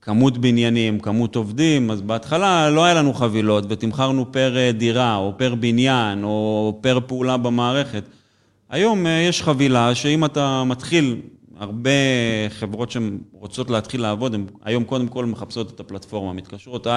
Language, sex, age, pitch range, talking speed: Hebrew, male, 30-49, 110-140 Hz, 140 wpm